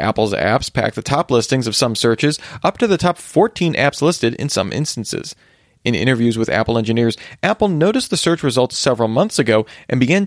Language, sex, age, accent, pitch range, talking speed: English, male, 30-49, American, 115-150 Hz, 200 wpm